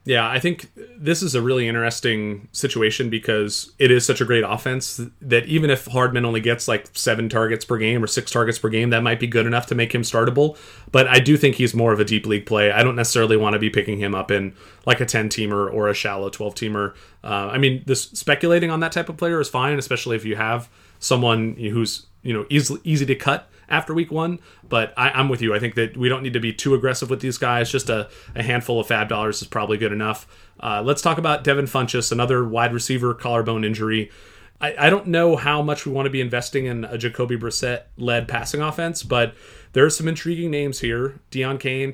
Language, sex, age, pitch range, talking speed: English, male, 30-49, 110-135 Hz, 230 wpm